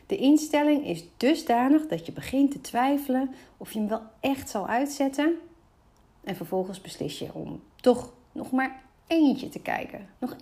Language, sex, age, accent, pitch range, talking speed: Dutch, female, 40-59, Dutch, 195-265 Hz, 160 wpm